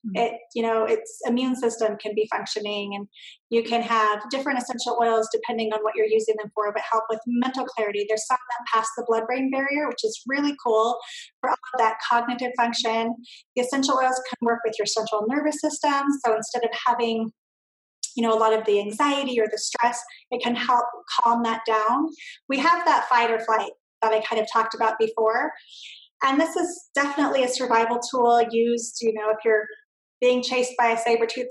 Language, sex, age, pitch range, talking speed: English, female, 30-49, 220-255 Hz, 200 wpm